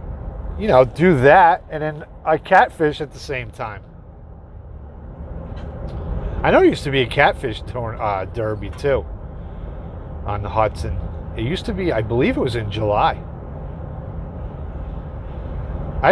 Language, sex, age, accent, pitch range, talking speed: English, male, 40-59, American, 80-125 Hz, 135 wpm